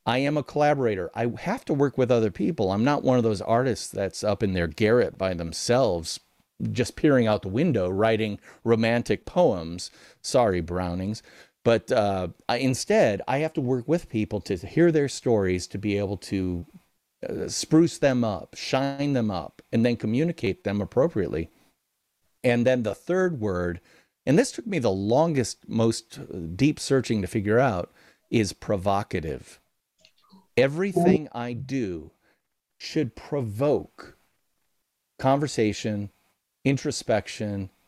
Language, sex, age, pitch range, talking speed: English, male, 40-59, 100-135 Hz, 145 wpm